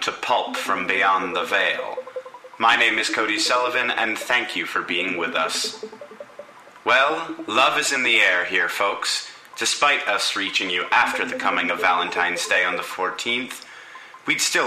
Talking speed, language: 170 wpm, English